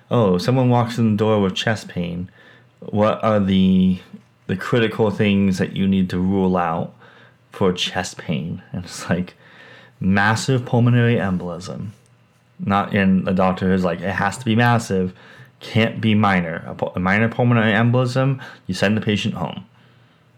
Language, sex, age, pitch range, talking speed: English, male, 30-49, 90-115 Hz, 160 wpm